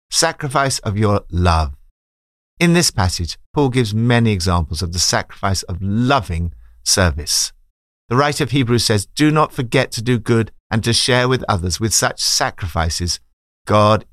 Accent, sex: British, male